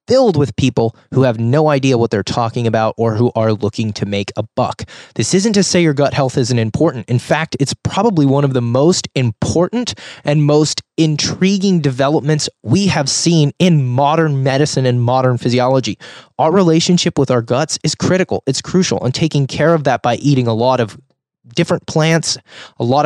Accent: American